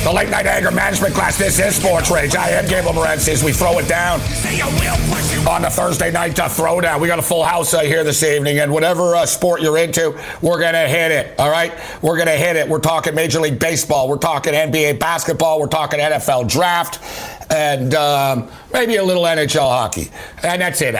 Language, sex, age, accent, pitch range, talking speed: English, male, 60-79, American, 145-170 Hz, 205 wpm